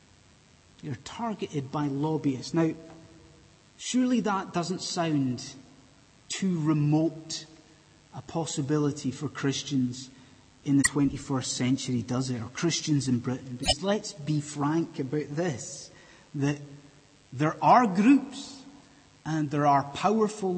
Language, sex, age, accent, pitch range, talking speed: English, male, 30-49, British, 140-185 Hz, 110 wpm